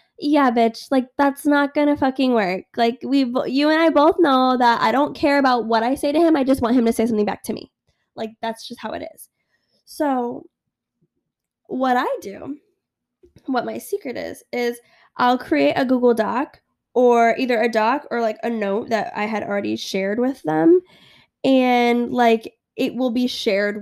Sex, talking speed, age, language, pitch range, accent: female, 190 wpm, 10-29, English, 220-280 Hz, American